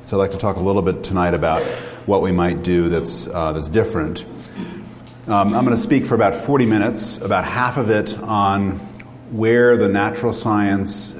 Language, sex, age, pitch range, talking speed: English, male, 40-59, 90-110 Hz, 195 wpm